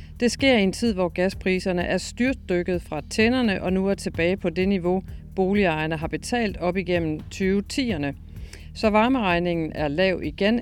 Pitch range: 165-210 Hz